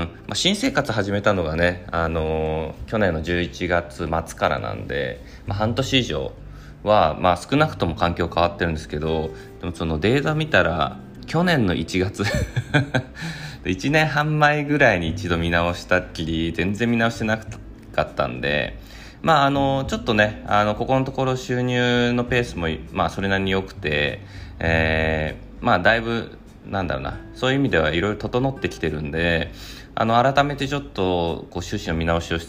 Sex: male